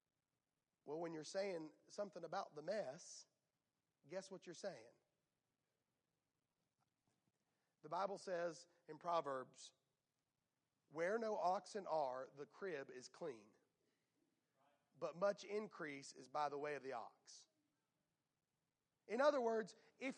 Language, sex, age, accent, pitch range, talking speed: English, male, 40-59, American, 200-335 Hz, 115 wpm